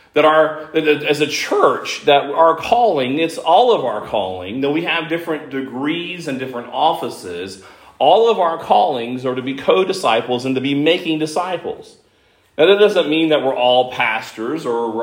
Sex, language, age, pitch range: male, English, 40-59, 125-165 Hz